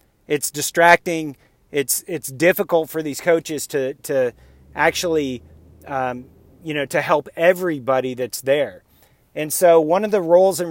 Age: 40-59